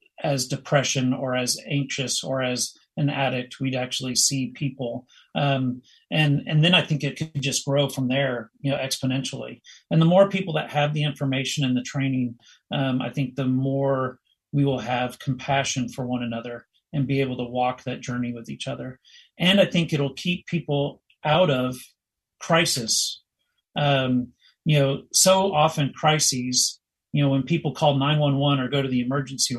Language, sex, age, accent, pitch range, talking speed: English, male, 40-59, American, 130-150 Hz, 180 wpm